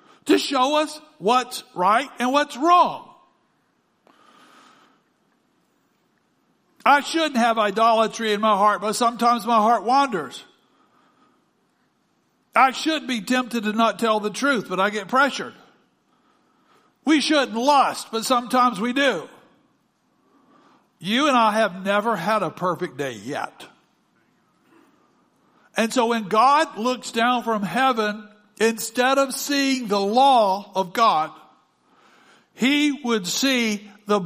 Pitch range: 220-280 Hz